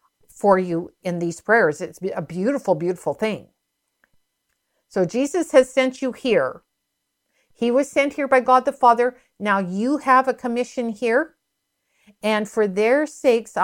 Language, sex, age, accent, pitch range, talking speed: English, female, 50-69, American, 200-265 Hz, 150 wpm